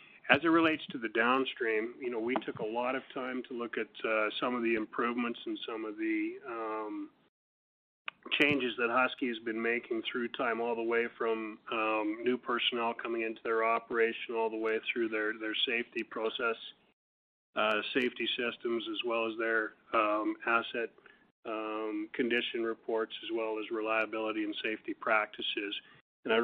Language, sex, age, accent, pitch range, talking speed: English, male, 40-59, American, 110-135 Hz, 170 wpm